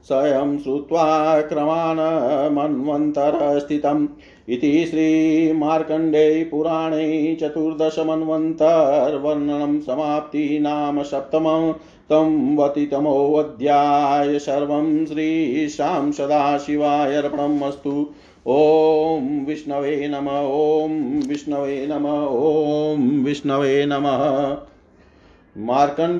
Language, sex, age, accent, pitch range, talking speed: Hindi, male, 50-69, native, 140-160 Hz, 50 wpm